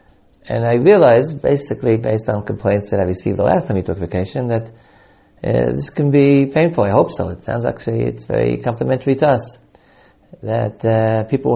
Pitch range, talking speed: 105-130 Hz, 185 wpm